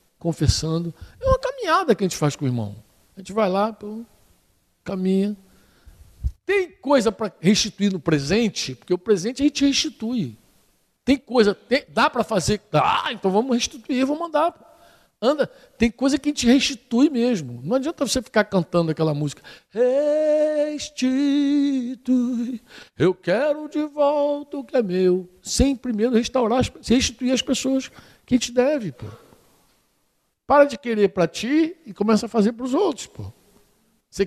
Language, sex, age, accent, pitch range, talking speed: Portuguese, male, 60-79, Brazilian, 195-285 Hz, 160 wpm